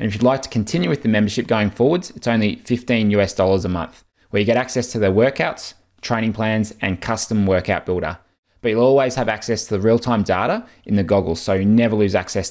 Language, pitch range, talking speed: English, 105-120 Hz, 230 wpm